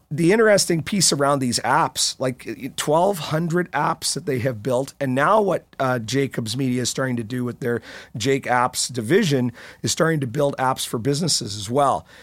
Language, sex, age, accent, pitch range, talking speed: English, male, 40-59, American, 120-145 Hz, 180 wpm